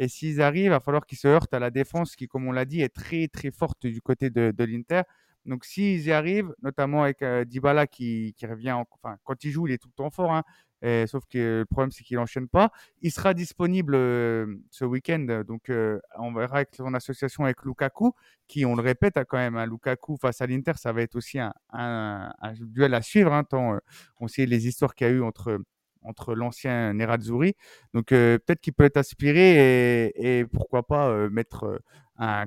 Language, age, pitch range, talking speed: French, 30-49, 120-150 Hz, 235 wpm